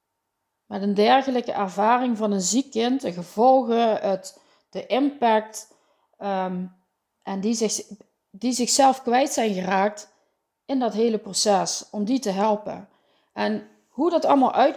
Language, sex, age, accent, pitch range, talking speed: Dutch, female, 40-59, Dutch, 190-245 Hz, 130 wpm